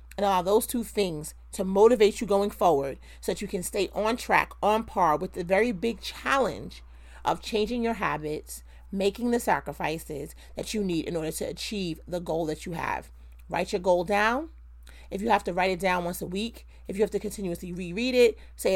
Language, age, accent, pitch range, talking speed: English, 30-49, American, 170-215 Hz, 210 wpm